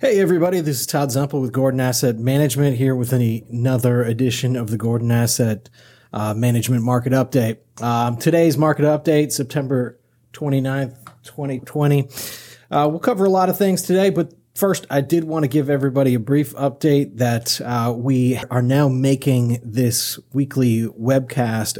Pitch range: 120-140 Hz